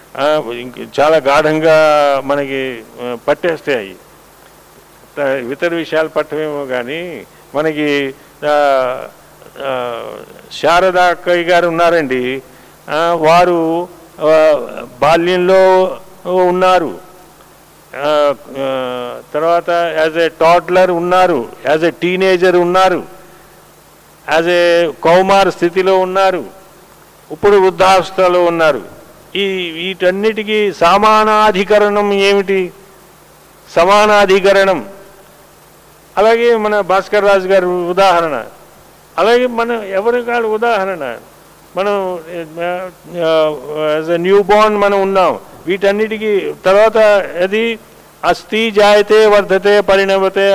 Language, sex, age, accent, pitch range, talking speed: Telugu, male, 50-69, native, 165-200 Hz, 70 wpm